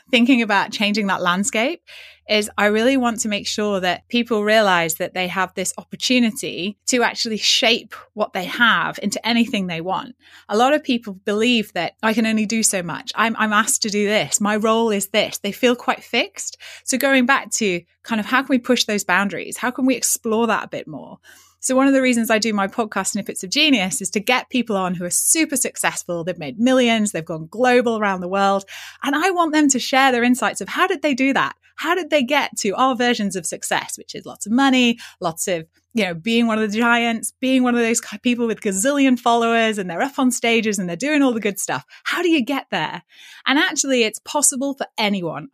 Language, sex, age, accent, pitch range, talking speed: English, female, 20-39, British, 195-255 Hz, 230 wpm